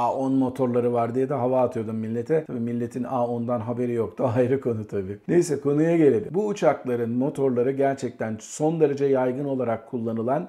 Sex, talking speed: male, 160 wpm